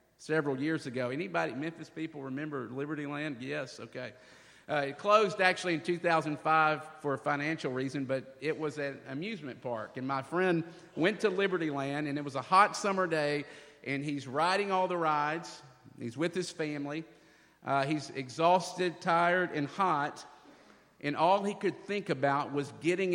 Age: 50-69